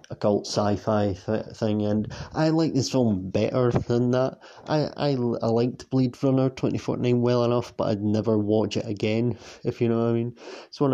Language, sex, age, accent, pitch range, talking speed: English, male, 30-49, British, 105-120 Hz, 185 wpm